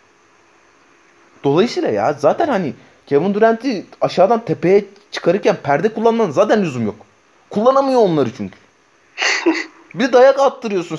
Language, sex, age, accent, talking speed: Turkish, male, 30-49, native, 110 wpm